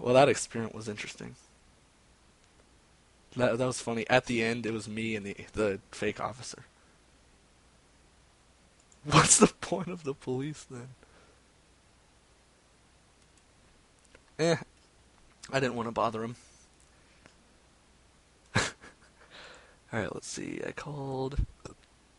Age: 20-39